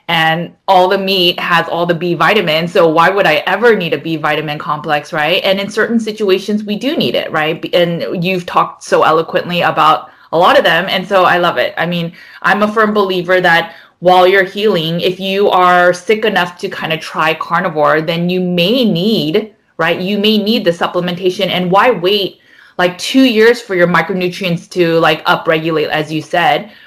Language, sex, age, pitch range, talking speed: English, female, 20-39, 165-195 Hz, 200 wpm